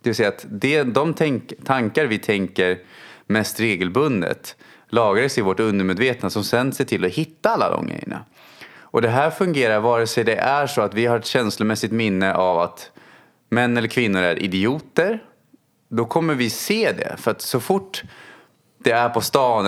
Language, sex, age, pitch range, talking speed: Swedish, male, 30-49, 100-130 Hz, 170 wpm